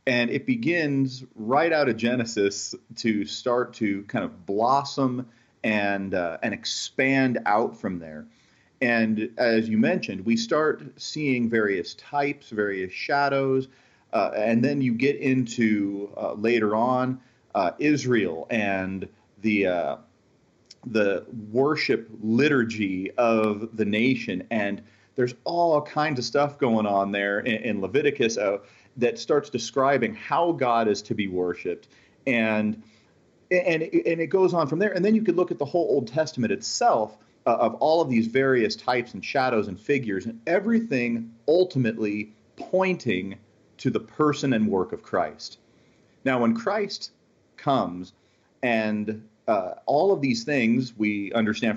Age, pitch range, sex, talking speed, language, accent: 40-59, 110-140 Hz, male, 145 wpm, English, American